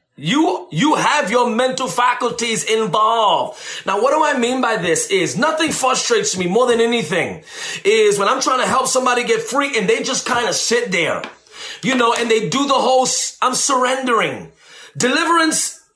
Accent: American